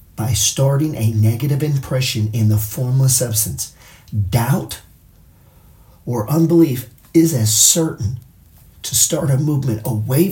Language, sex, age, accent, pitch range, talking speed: English, male, 40-59, American, 110-130 Hz, 115 wpm